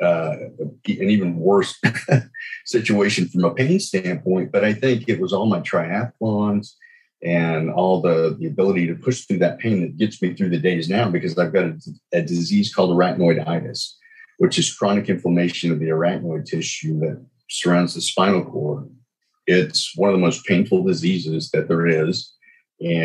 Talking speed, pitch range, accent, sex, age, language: 170 wpm, 80-105 Hz, American, male, 40-59, English